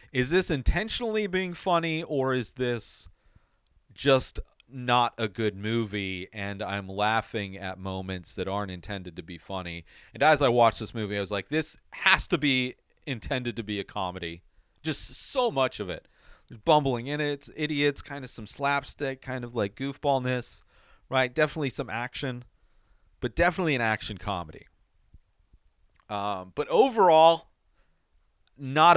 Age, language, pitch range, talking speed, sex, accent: 30-49, English, 100-140 Hz, 155 wpm, male, American